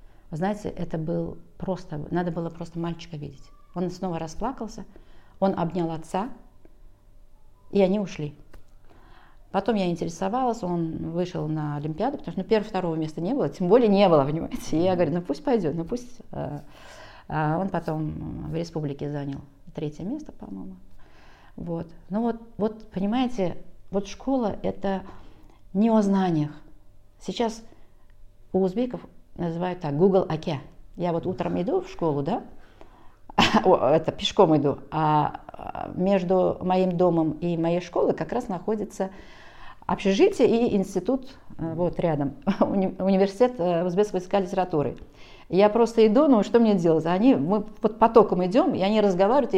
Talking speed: 145 wpm